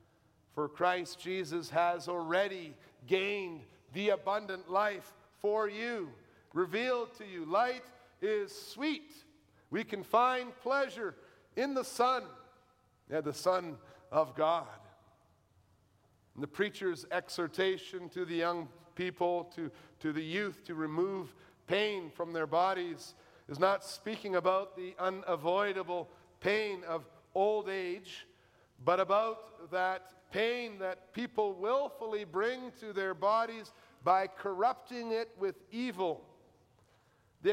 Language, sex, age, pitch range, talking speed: English, male, 50-69, 170-225 Hz, 115 wpm